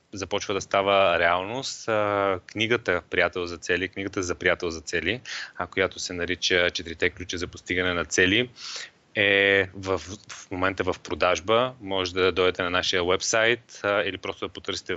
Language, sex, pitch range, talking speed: Bulgarian, male, 90-100 Hz, 150 wpm